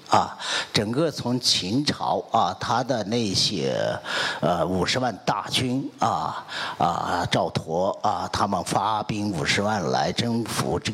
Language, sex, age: Chinese, male, 50-69